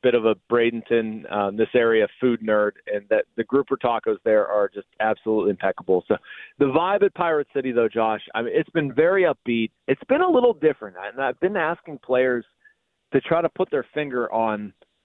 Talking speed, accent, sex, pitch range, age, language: 205 wpm, American, male, 115-155 Hz, 30-49, English